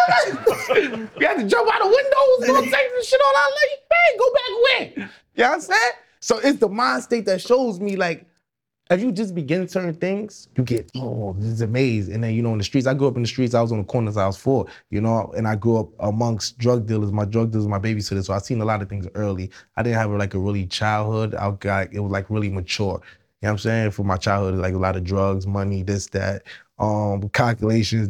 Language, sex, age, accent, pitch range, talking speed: English, male, 20-39, American, 100-140 Hz, 265 wpm